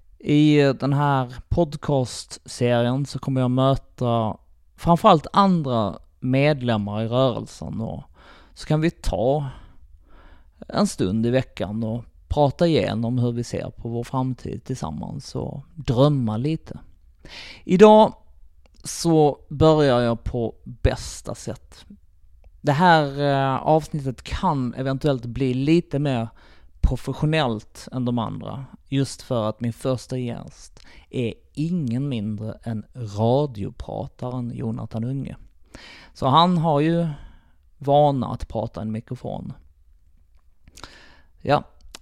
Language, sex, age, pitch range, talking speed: English, male, 20-39, 110-140 Hz, 110 wpm